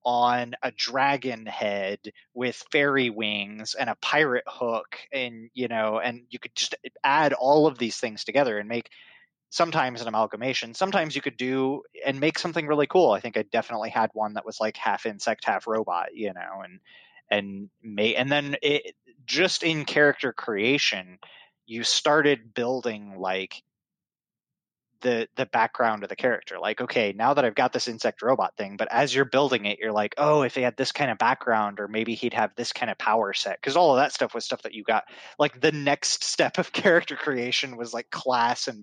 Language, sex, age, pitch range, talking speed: English, male, 20-39, 110-145 Hz, 200 wpm